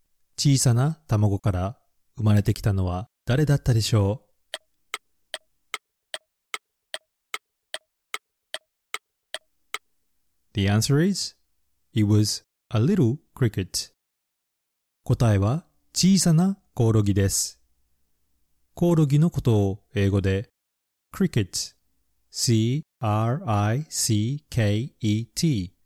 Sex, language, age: male, Japanese, 30-49